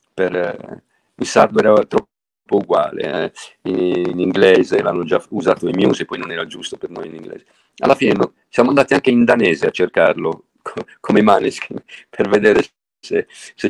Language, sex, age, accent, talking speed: Italian, male, 50-69, native, 185 wpm